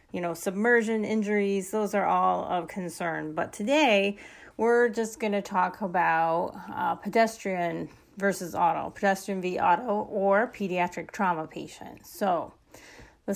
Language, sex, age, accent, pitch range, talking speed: English, female, 30-49, American, 185-215 Hz, 135 wpm